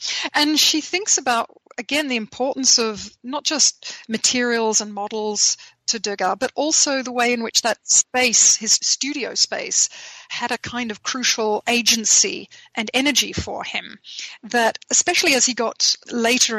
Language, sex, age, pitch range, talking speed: English, female, 40-59, 215-250 Hz, 150 wpm